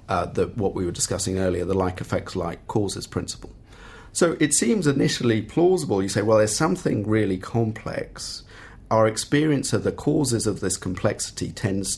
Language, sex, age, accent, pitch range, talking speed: English, male, 40-59, British, 100-130 Hz, 150 wpm